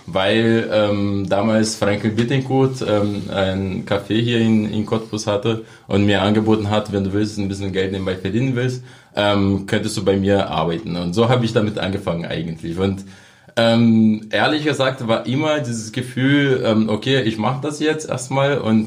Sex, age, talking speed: male, 20-39, 170 wpm